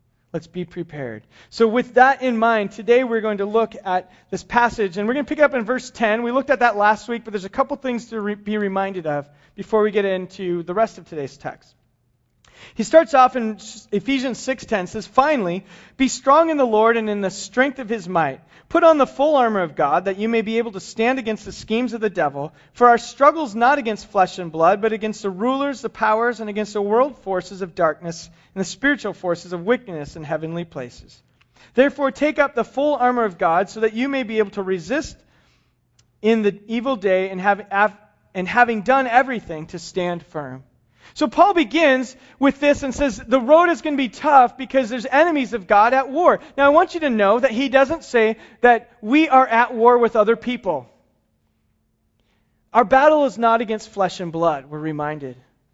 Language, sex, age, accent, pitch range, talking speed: English, male, 40-59, American, 180-250 Hz, 215 wpm